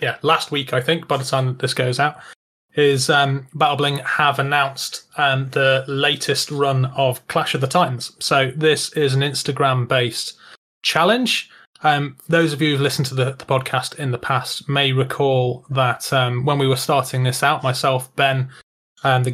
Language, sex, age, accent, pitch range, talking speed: English, male, 20-39, British, 130-145 Hz, 185 wpm